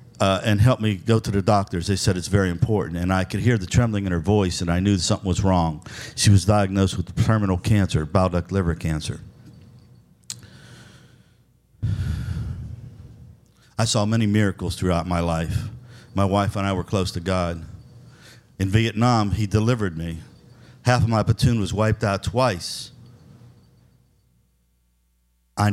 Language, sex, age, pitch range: English, male, 50-69, 95-115 Hz